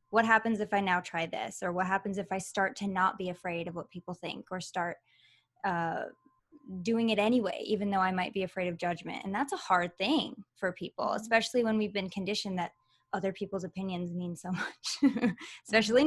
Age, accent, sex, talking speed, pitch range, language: 20-39, American, female, 205 wpm, 185-230 Hz, English